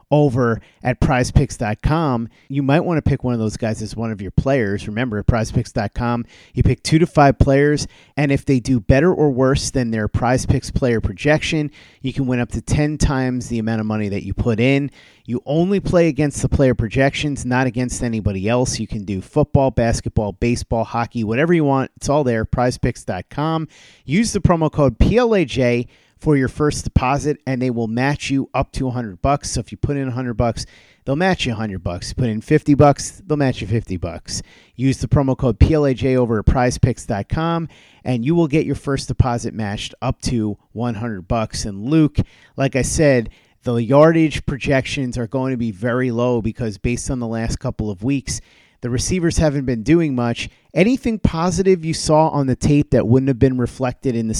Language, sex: English, male